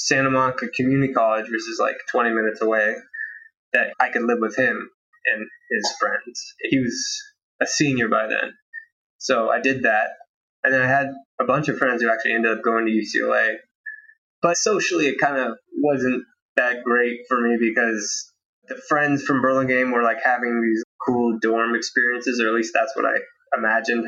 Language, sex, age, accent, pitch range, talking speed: English, male, 20-39, American, 115-185 Hz, 180 wpm